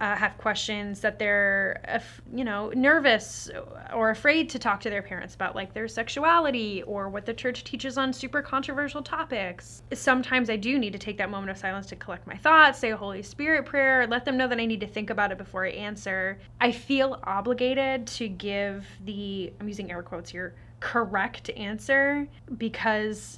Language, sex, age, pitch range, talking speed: English, female, 10-29, 195-255 Hz, 190 wpm